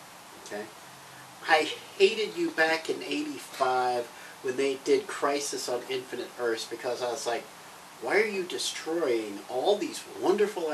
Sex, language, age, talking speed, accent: male, English, 40-59, 135 wpm, American